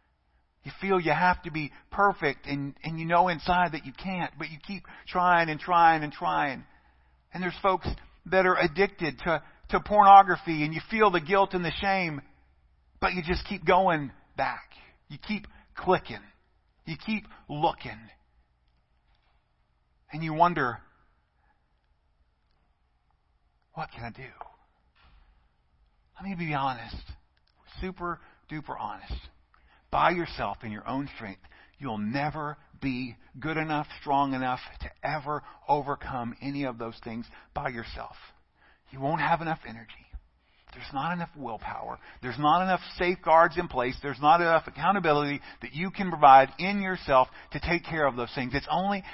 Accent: American